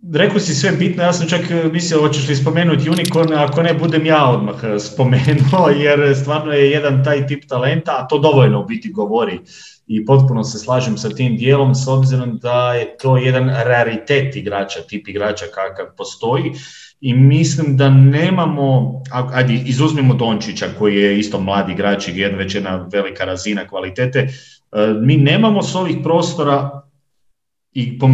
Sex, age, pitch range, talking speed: male, 40-59, 125-150 Hz, 160 wpm